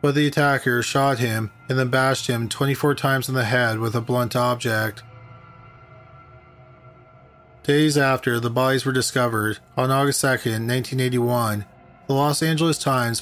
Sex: male